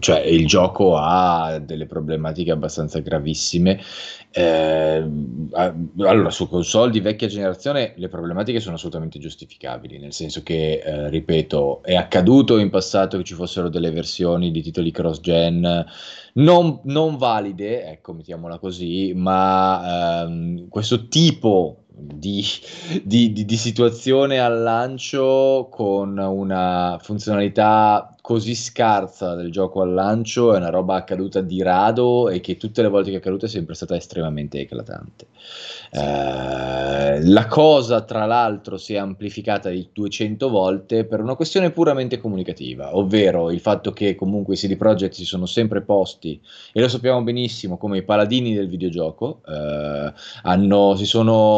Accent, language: native, Italian